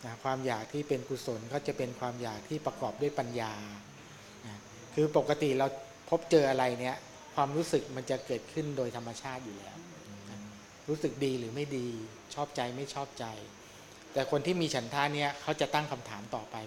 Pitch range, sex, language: 115-145 Hz, male, Thai